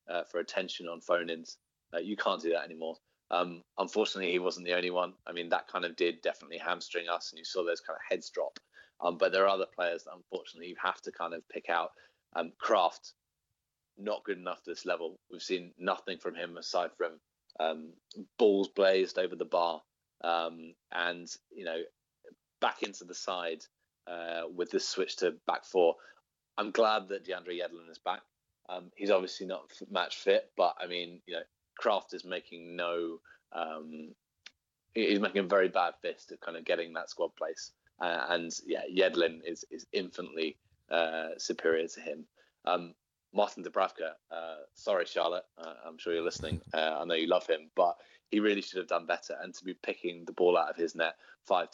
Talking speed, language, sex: 195 wpm, English, male